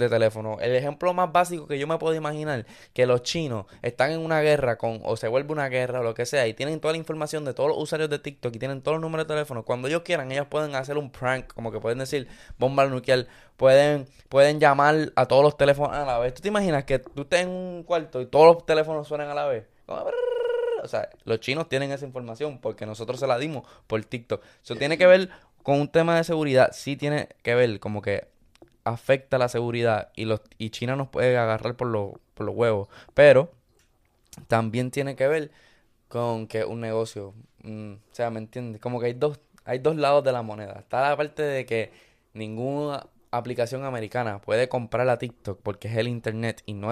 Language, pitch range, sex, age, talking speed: Spanish, 115-150 Hz, male, 10-29, 225 wpm